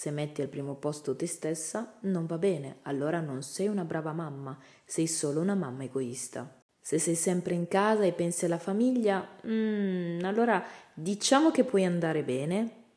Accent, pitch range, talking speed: native, 145-190 Hz, 170 wpm